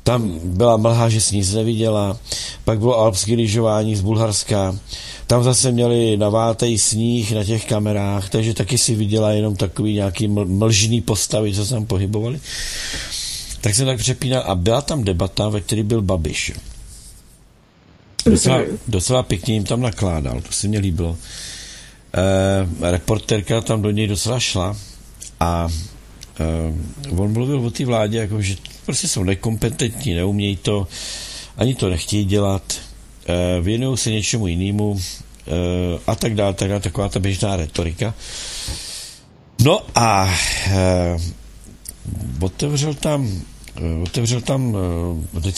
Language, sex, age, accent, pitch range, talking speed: Czech, male, 50-69, native, 95-115 Hz, 130 wpm